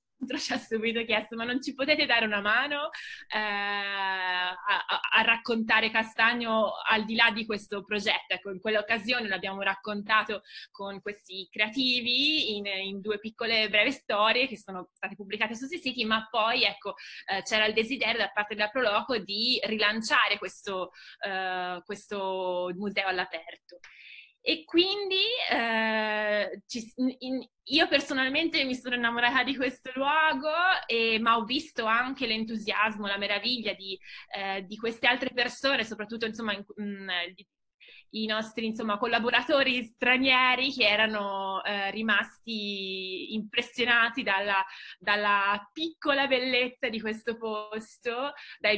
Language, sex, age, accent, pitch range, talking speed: Italian, female, 20-39, native, 205-245 Hz, 140 wpm